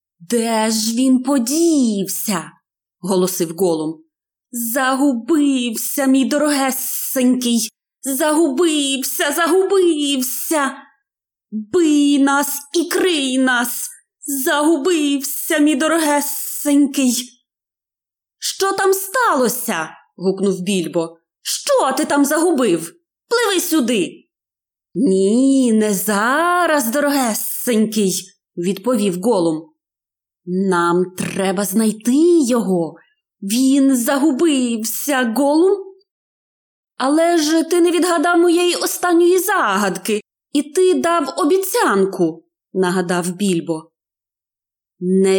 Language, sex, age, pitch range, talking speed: Ukrainian, female, 20-39, 190-300 Hz, 80 wpm